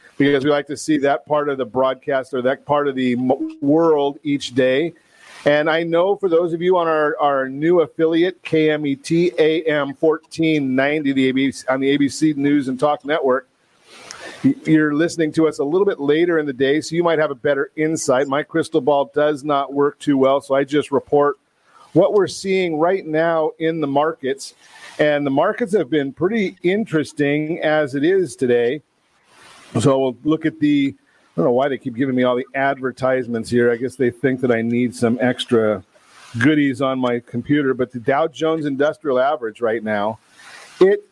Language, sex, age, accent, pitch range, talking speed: English, male, 40-59, American, 135-160 Hz, 190 wpm